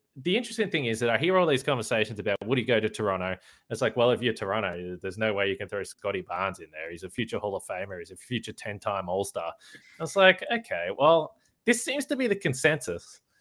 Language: English